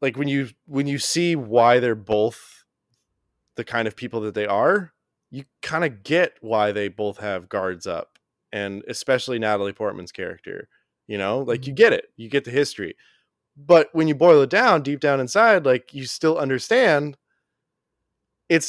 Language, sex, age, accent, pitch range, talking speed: English, male, 20-39, American, 110-145 Hz, 175 wpm